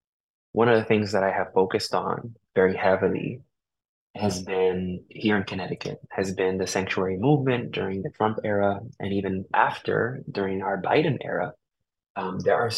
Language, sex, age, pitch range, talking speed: English, male, 20-39, 95-115 Hz, 165 wpm